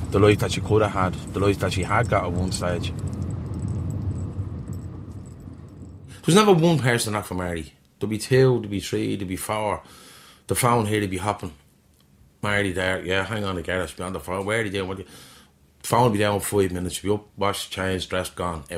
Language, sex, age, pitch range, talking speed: English, male, 30-49, 90-105 Hz, 210 wpm